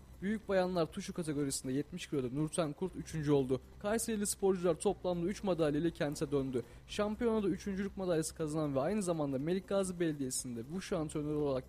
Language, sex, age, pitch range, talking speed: Turkish, male, 20-39, 145-185 Hz, 155 wpm